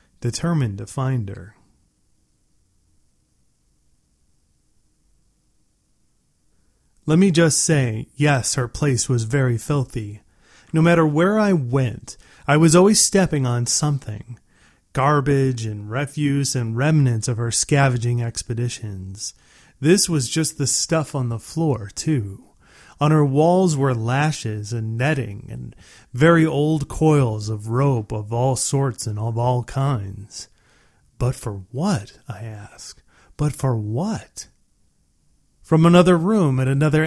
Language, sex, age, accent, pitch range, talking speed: English, male, 30-49, American, 110-150 Hz, 125 wpm